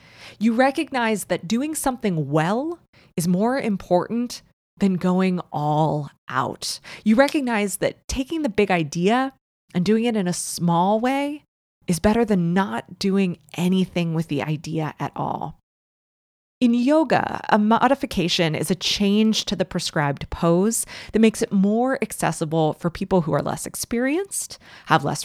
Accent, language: American, English